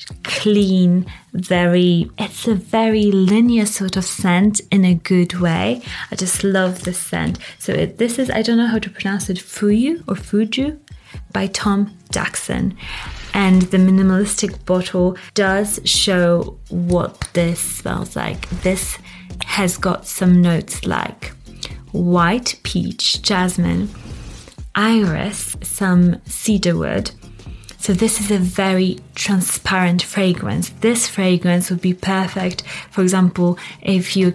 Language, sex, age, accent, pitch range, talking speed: English, female, 20-39, British, 180-200 Hz, 130 wpm